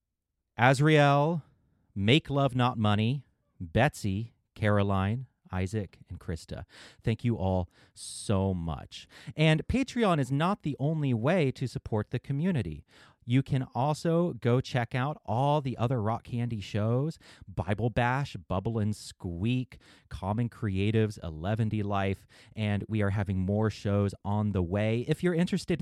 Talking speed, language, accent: 135 wpm, English, American